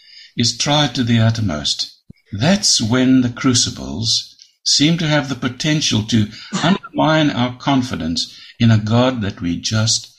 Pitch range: 115-155 Hz